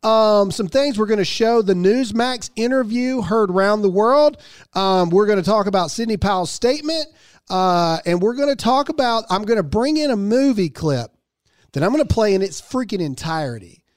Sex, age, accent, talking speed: male, 40-59, American, 200 wpm